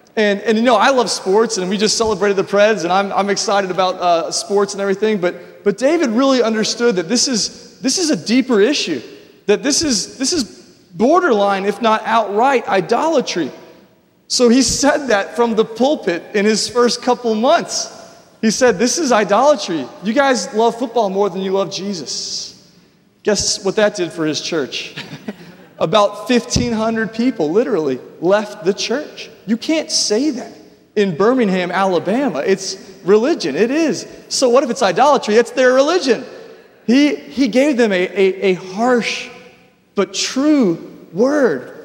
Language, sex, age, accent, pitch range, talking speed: English, male, 30-49, American, 200-250 Hz, 165 wpm